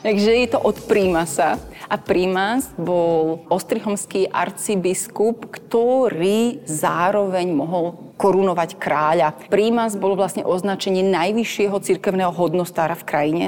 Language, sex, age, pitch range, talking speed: Slovak, female, 30-49, 170-200 Hz, 105 wpm